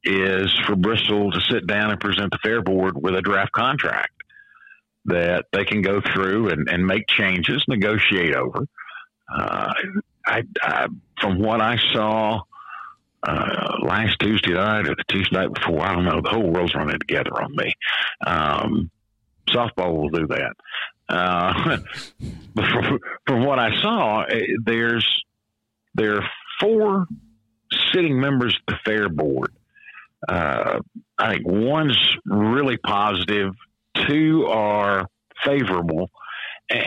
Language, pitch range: English, 100-125 Hz